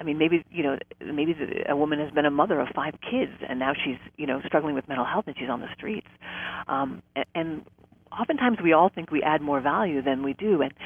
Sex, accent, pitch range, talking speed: female, American, 145-190 Hz, 245 wpm